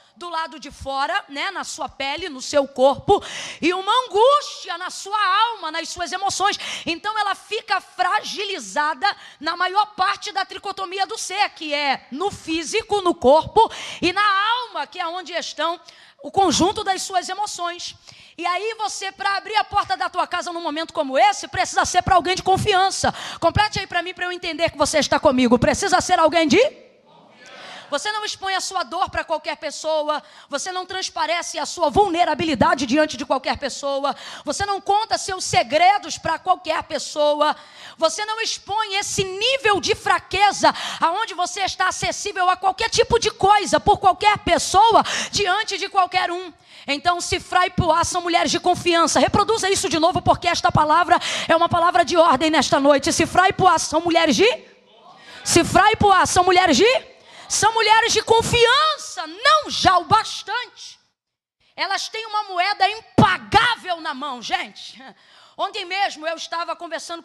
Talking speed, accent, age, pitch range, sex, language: 165 wpm, Brazilian, 20-39, 315-395 Hz, female, Portuguese